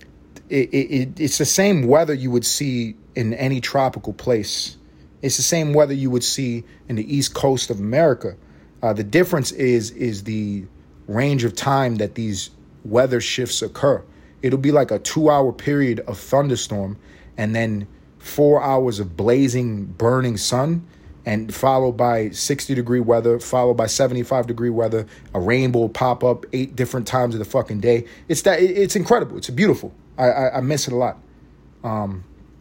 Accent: American